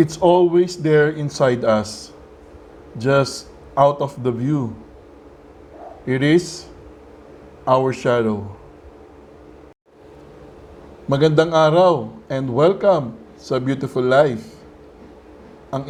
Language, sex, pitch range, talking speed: Filipino, male, 110-155 Hz, 85 wpm